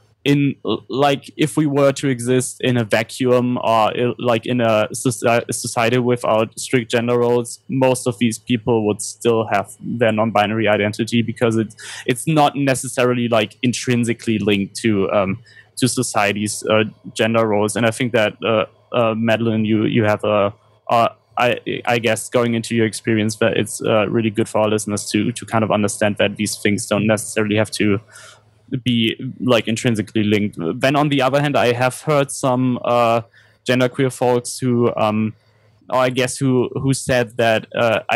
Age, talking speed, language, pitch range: 20-39, 170 wpm, English, 110-125 Hz